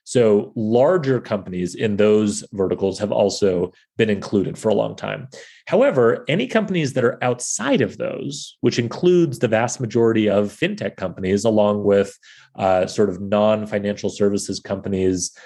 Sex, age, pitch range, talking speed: male, 30-49, 100-135 Hz, 150 wpm